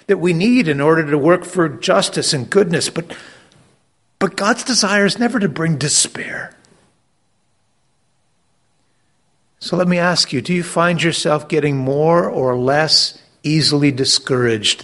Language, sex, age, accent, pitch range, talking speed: English, male, 50-69, American, 125-170 Hz, 140 wpm